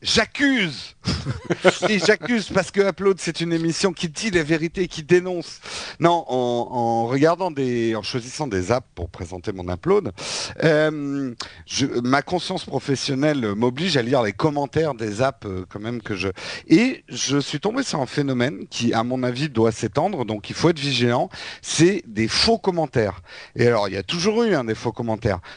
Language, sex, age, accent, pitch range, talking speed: French, male, 50-69, French, 120-170 Hz, 185 wpm